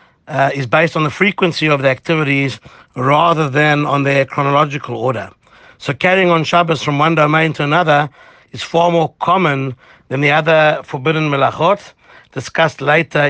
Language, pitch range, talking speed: English, 140-165 Hz, 160 wpm